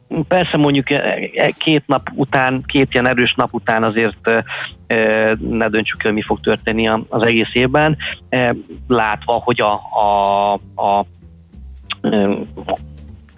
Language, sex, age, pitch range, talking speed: Hungarian, male, 40-59, 110-130 Hz, 120 wpm